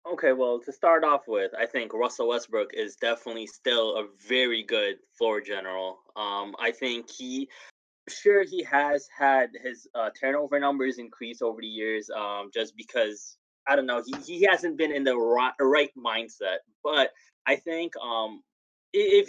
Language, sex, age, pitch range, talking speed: English, male, 20-39, 115-170 Hz, 170 wpm